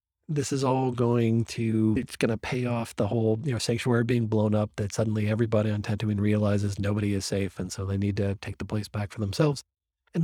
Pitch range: 100-120 Hz